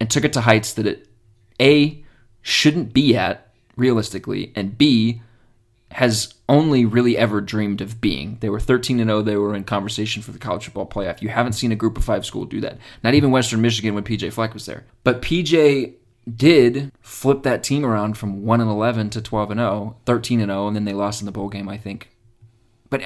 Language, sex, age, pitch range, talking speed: English, male, 30-49, 105-130 Hz, 215 wpm